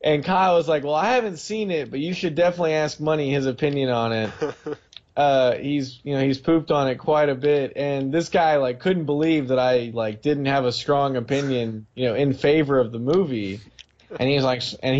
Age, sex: 20-39, male